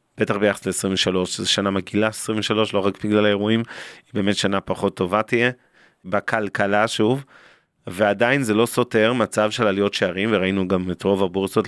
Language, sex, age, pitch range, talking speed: Hebrew, male, 30-49, 100-120 Hz, 160 wpm